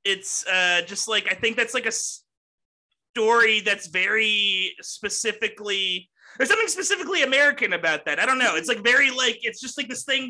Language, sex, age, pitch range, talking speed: English, male, 30-49, 175-230 Hz, 180 wpm